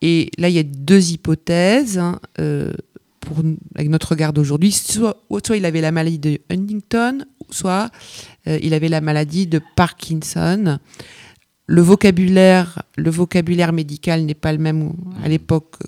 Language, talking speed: French, 150 wpm